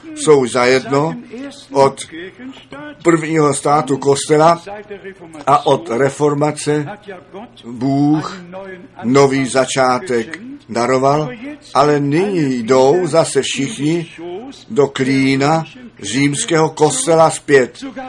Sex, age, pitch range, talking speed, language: male, 50-69, 135-185 Hz, 75 wpm, Czech